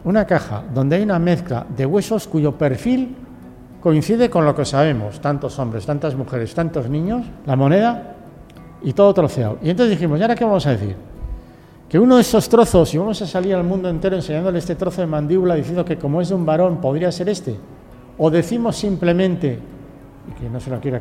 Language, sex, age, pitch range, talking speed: Spanish, male, 50-69, 140-185 Hz, 205 wpm